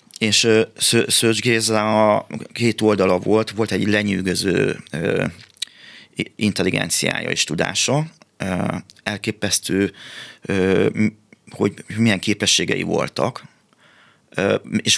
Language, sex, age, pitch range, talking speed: Hungarian, male, 30-49, 100-115 Hz, 90 wpm